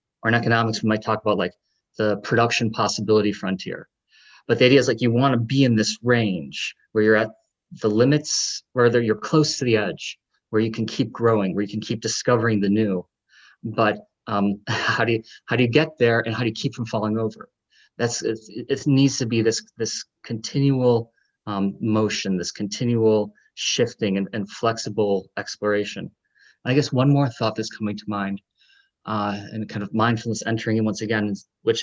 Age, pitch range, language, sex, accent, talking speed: 30-49, 105-120 Hz, English, male, American, 195 wpm